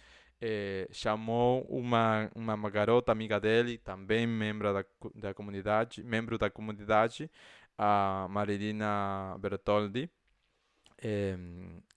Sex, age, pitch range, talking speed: male, 20-39, 105-140 Hz, 95 wpm